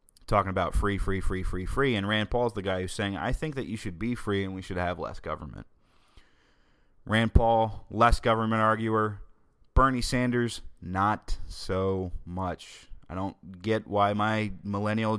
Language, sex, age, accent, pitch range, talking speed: English, male, 30-49, American, 90-115 Hz, 170 wpm